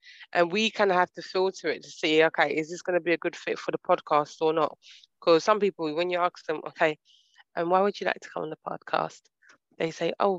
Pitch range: 155-195 Hz